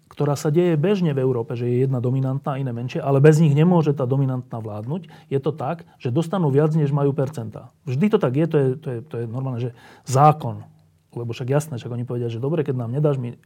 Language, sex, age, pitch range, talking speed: Slovak, male, 30-49, 125-155 Hz, 235 wpm